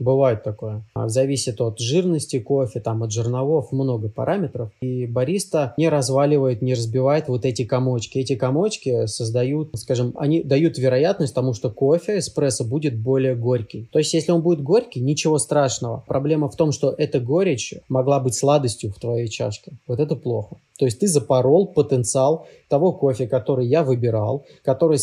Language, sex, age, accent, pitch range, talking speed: Russian, male, 20-39, native, 120-145 Hz, 165 wpm